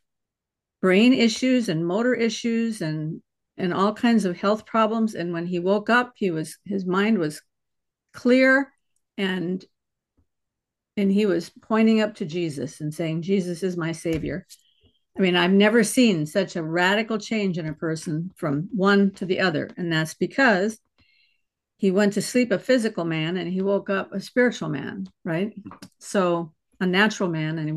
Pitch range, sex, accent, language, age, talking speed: 175-220 Hz, female, American, English, 50-69, 170 wpm